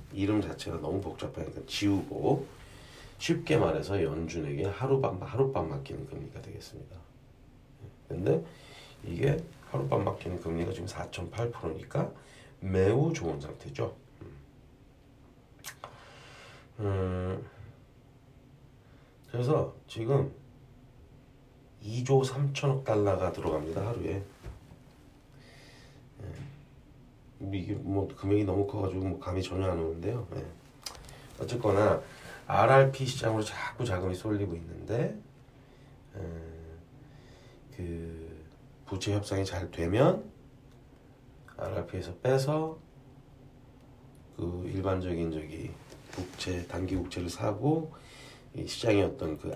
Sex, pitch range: male, 90-135 Hz